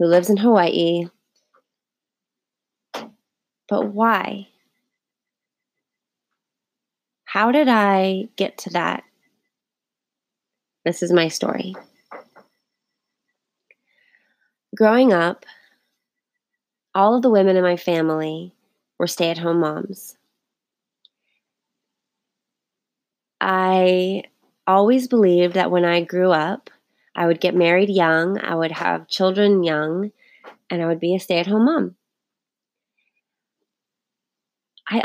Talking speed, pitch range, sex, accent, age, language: 90 wpm, 175-230 Hz, female, American, 20-39, English